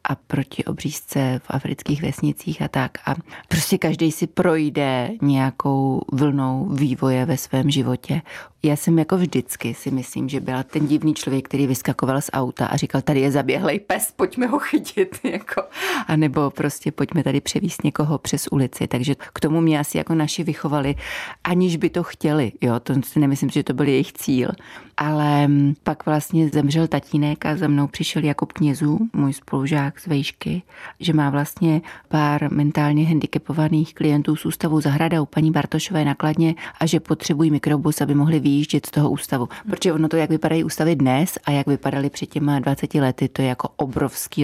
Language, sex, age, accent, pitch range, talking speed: Czech, female, 30-49, native, 135-155 Hz, 170 wpm